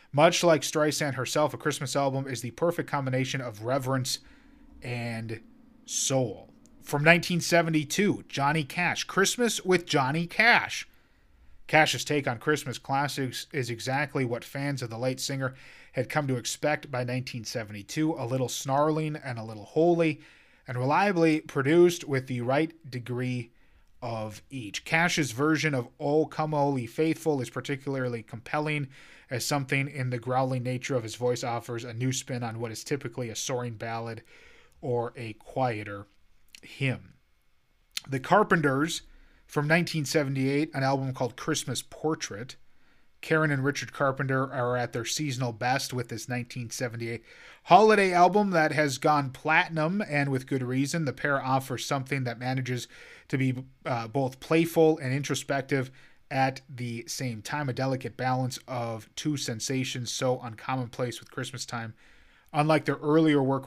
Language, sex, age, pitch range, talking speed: English, male, 30-49, 125-150 Hz, 145 wpm